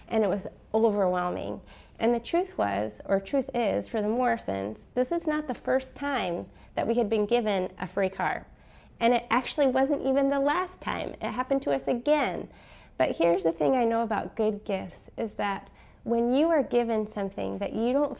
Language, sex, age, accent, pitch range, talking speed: English, female, 30-49, American, 205-260 Hz, 200 wpm